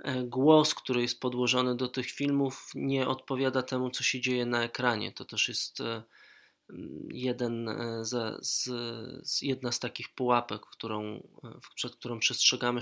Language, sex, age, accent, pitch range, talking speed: Polish, male, 20-39, native, 120-130 Hz, 115 wpm